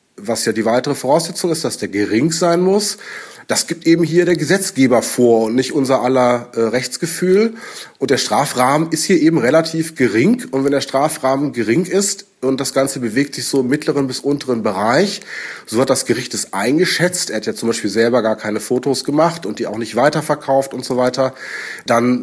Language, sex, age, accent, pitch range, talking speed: German, male, 30-49, German, 120-160 Hz, 200 wpm